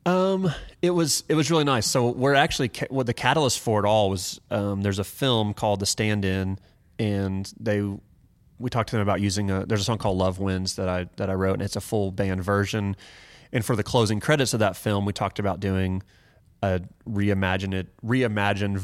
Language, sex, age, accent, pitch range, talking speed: English, male, 30-49, American, 95-115 Hz, 210 wpm